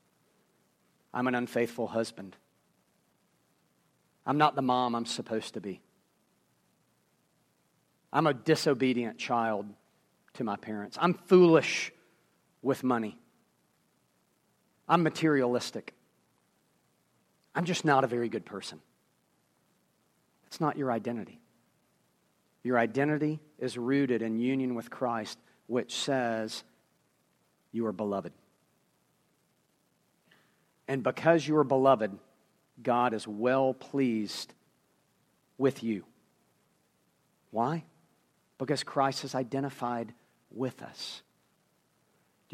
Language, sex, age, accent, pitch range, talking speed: English, male, 40-59, American, 120-145 Hz, 95 wpm